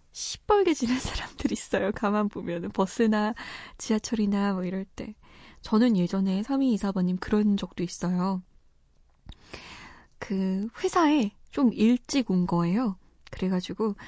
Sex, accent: female, native